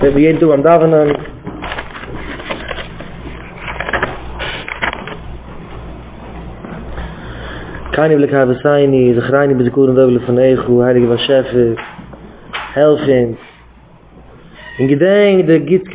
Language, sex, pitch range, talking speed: English, male, 120-160 Hz, 40 wpm